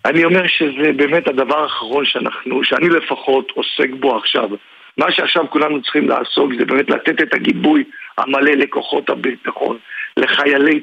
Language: Hebrew